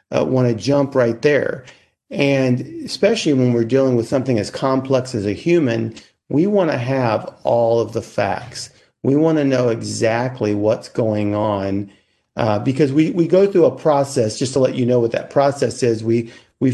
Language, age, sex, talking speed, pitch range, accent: English, 50-69, male, 190 wpm, 115-140 Hz, American